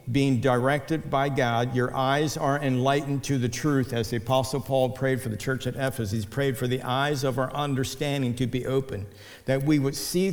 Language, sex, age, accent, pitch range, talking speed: English, male, 60-79, American, 120-140 Hz, 210 wpm